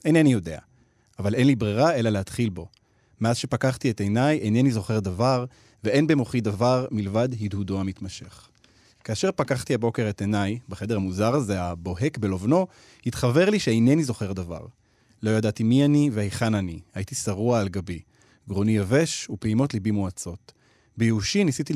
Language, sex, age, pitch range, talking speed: Hebrew, male, 30-49, 105-140 Hz, 150 wpm